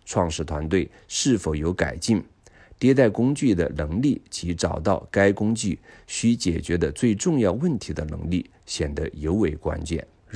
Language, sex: Chinese, male